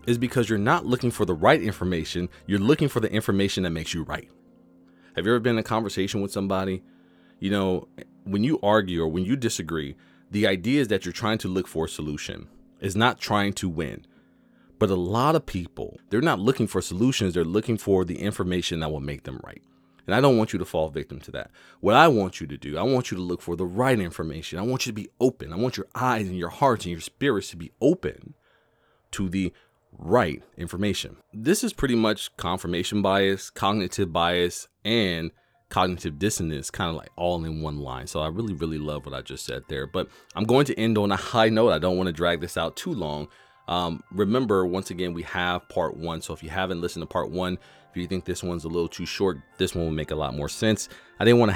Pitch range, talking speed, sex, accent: 85-105 Hz, 235 wpm, male, American